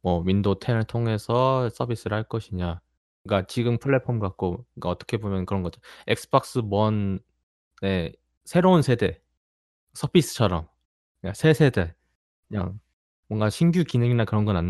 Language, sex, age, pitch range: Korean, male, 20-39, 85-120 Hz